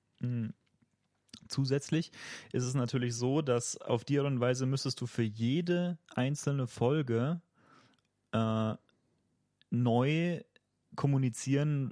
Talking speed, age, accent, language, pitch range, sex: 100 wpm, 30-49, German, German, 120-140 Hz, male